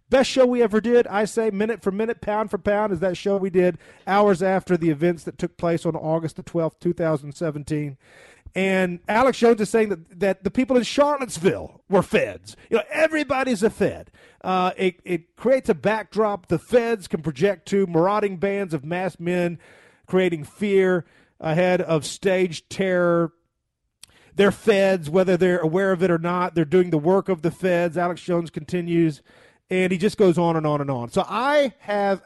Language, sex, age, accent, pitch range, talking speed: English, male, 40-59, American, 165-210 Hz, 190 wpm